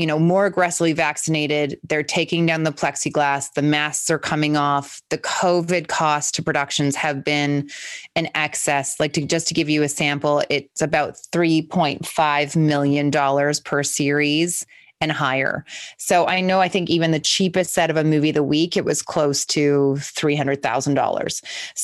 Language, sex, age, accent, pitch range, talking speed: English, female, 20-39, American, 150-180 Hz, 160 wpm